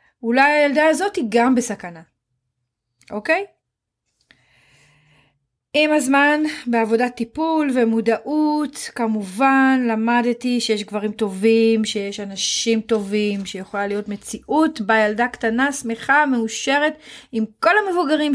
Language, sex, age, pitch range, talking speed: Hebrew, female, 30-49, 205-265 Hz, 105 wpm